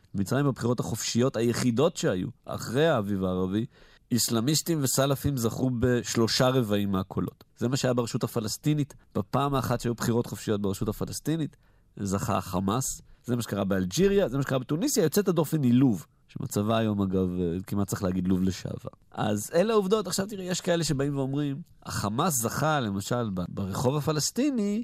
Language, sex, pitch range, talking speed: Hebrew, male, 105-145 Hz, 145 wpm